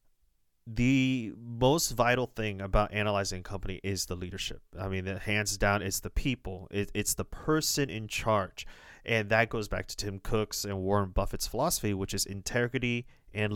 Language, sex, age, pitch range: English, male, 30-49, 100-120 Hz